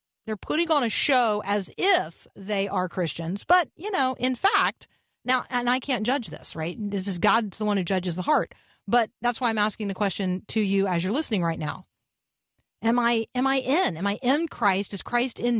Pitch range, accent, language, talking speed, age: 185-250 Hz, American, English, 220 wpm, 40-59